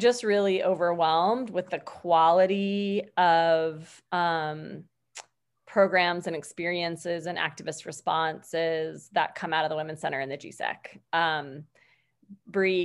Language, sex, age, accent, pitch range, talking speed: English, female, 20-39, American, 165-215 Hz, 120 wpm